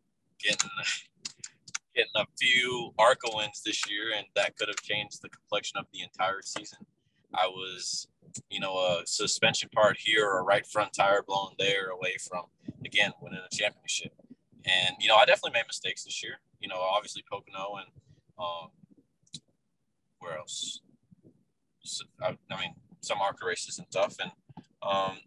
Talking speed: 155 wpm